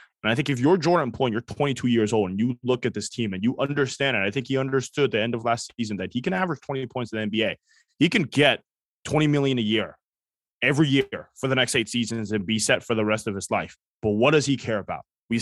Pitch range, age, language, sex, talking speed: 110-150 Hz, 20-39, English, male, 275 wpm